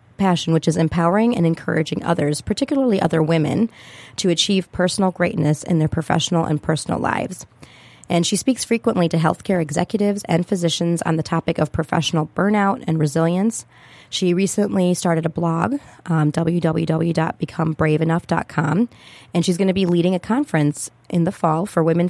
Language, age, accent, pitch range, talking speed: English, 30-49, American, 160-195 Hz, 155 wpm